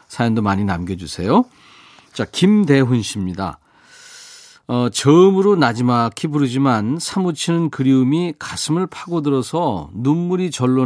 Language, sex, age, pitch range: Korean, male, 40-59, 110-155 Hz